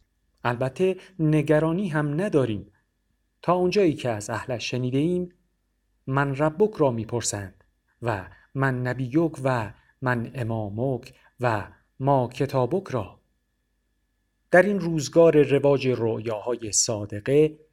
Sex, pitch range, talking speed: male, 115-155 Hz, 110 wpm